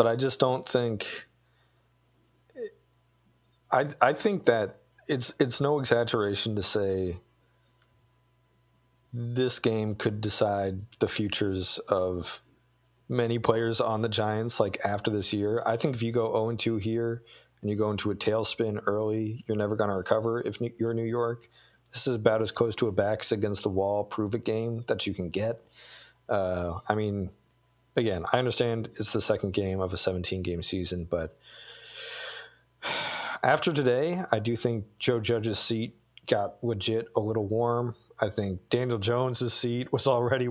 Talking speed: 155 wpm